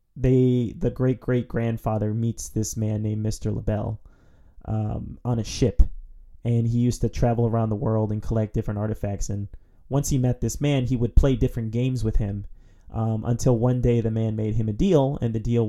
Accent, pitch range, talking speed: American, 105-120 Hz, 205 wpm